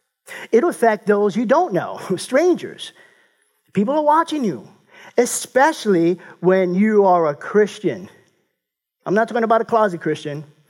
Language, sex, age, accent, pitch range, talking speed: English, male, 50-69, American, 175-235 Hz, 135 wpm